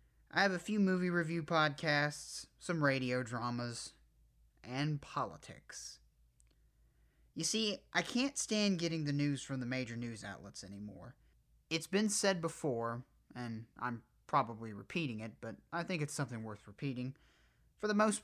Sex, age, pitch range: male, 30-49, 110-155 Hz